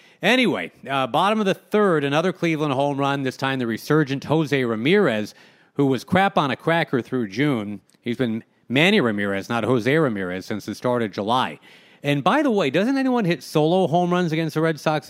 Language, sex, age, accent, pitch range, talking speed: English, male, 40-59, American, 115-155 Hz, 200 wpm